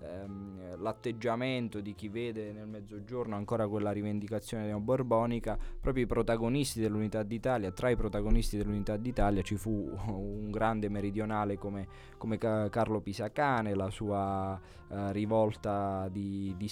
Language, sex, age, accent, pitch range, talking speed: Italian, male, 20-39, native, 100-120 Hz, 130 wpm